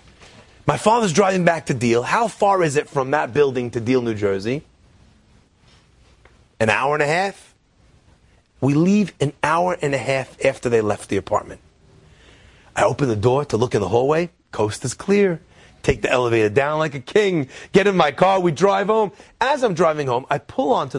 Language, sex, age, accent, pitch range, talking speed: English, male, 30-49, American, 125-185 Hz, 190 wpm